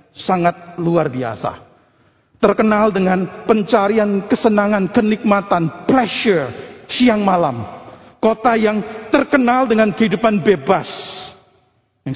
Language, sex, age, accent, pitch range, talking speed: Indonesian, male, 50-69, native, 155-225 Hz, 90 wpm